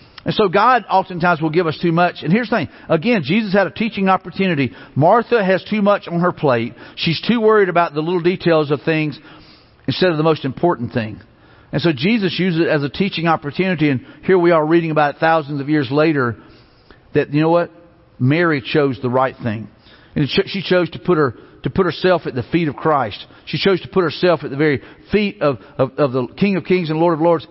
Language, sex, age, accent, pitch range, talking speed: English, male, 50-69, American, 145-185 Hz, 225 wpm